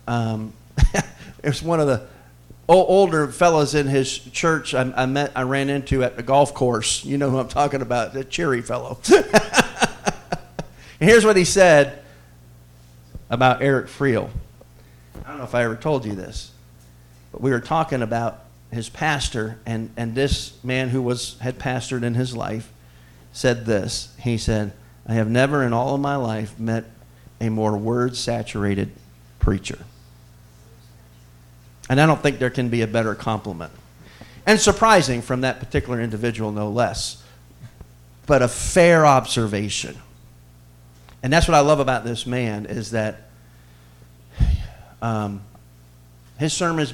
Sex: male